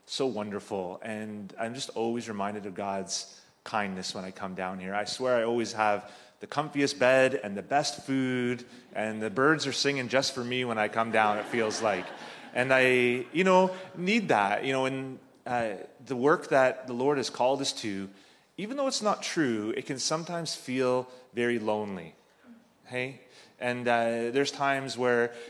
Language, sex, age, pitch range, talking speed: English, male, 30-49, 105-130 Hz, 185 wpm